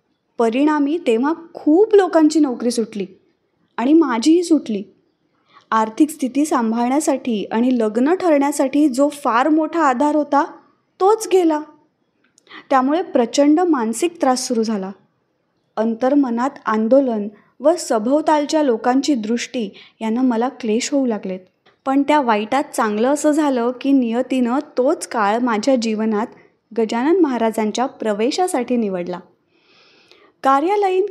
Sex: female